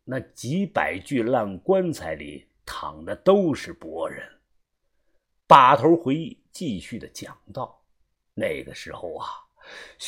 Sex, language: male, Chinese